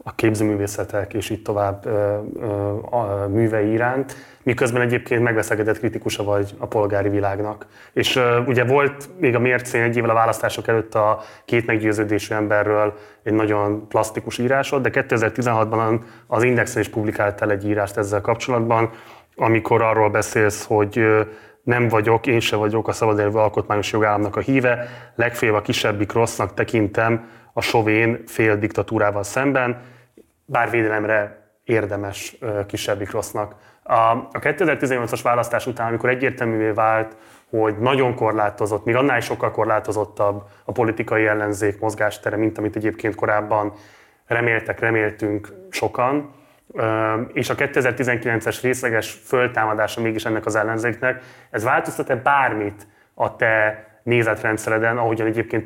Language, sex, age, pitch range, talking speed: Hungarian, male, 20-39, 105-120 Hz, 130 wpm